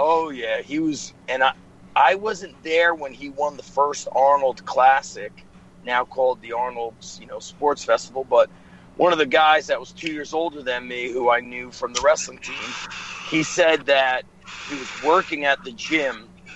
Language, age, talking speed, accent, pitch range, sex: English, 40-59, 190 wpm, American, 130-165 Hz, male